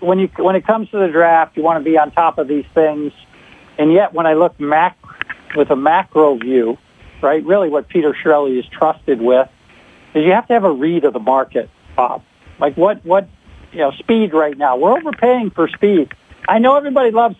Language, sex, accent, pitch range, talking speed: English, male, American, 140-180 Hz, 215 wpm